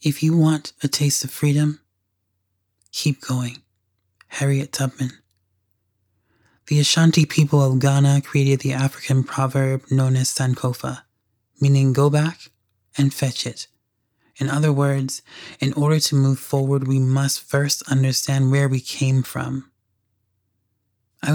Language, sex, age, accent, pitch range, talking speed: English, male, 20-39, American, 120-140 Hz, 130 wpm